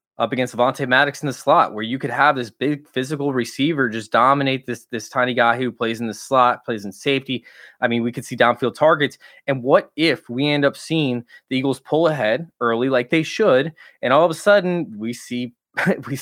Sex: male